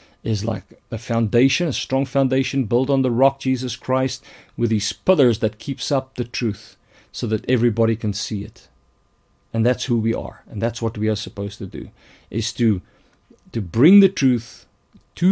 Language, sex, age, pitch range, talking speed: English, male, 50-69, 110-130 Hz, 185 wpm